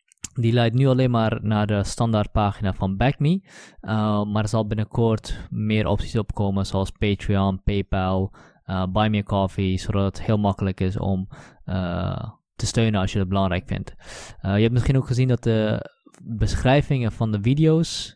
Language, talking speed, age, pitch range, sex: Dutch, 170 wpm, 20-39, 95-115 Hz, male